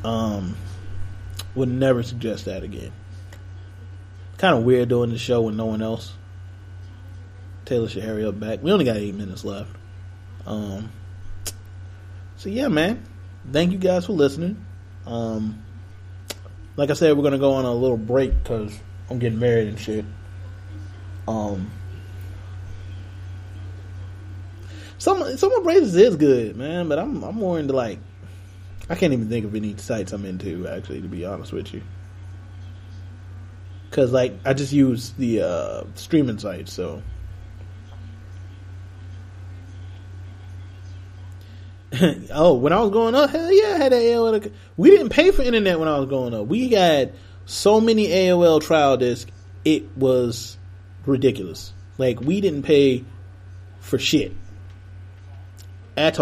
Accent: American